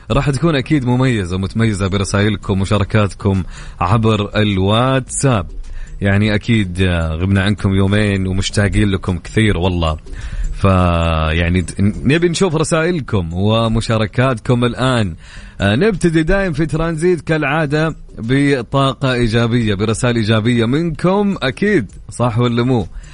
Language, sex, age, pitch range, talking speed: English, male, 30-49, 95-125 Hz, 100 wpm